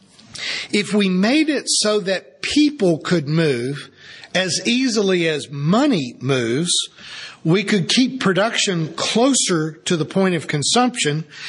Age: 50-69